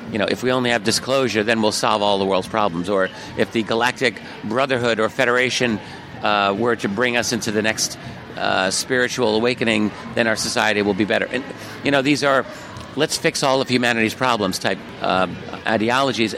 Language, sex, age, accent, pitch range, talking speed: English, male, 50-69, American, 110-135 Hz, 185 wpm